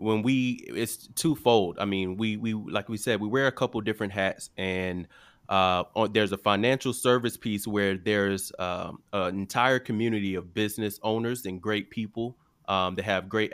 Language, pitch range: English, 95-115 Hz